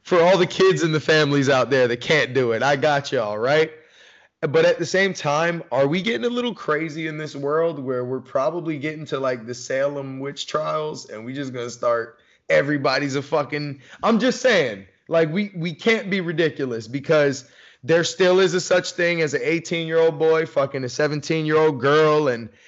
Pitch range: 135-170 Hz